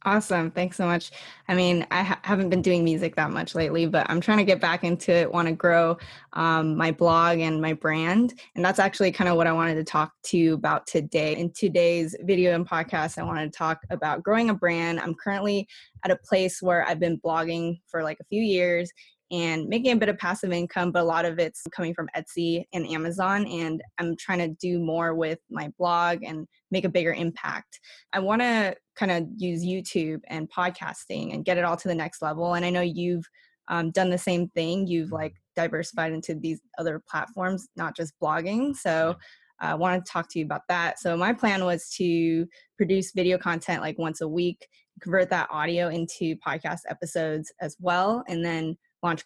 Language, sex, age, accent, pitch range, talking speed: English, female, 10-29, American, 165-185 Hz, 210 wpm